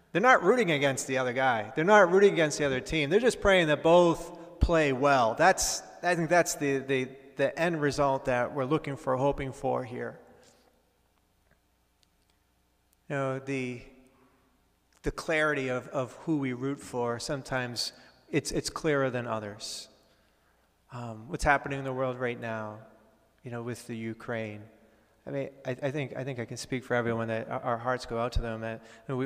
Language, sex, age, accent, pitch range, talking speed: English, male, 40-59, American, 120-150 Hz, 175 wpm